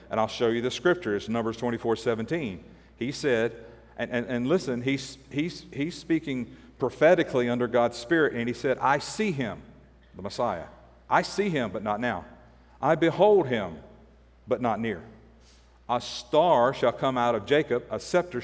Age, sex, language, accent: 50-69, male, English, American